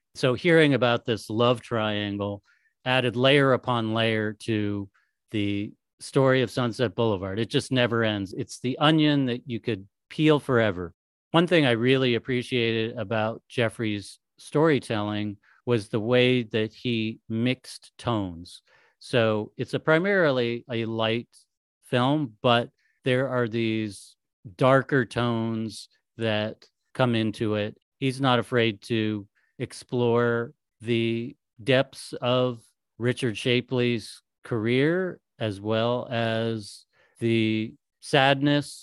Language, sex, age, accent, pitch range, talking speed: English, male, 40-59, American, 110-130 Hz, 115 wpm